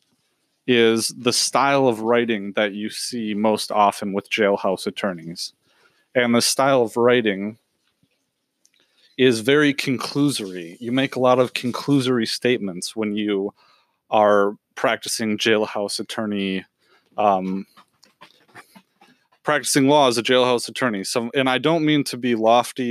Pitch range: 105-125 Hz